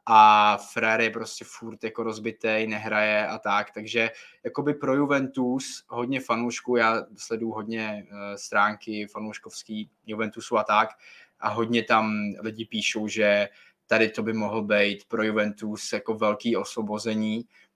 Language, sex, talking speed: Czech, male, 130 wpm